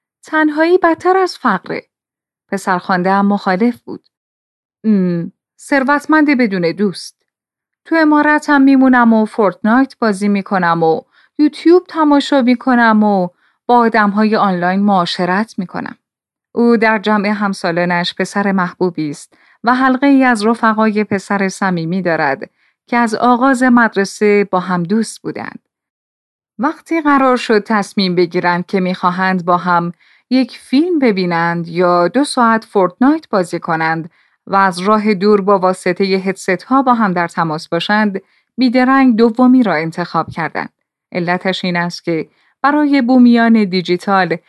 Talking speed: 130 wpm